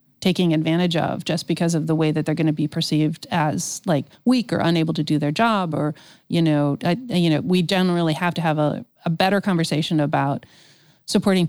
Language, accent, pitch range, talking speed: English, American, 160-190 Hz, 210 wpm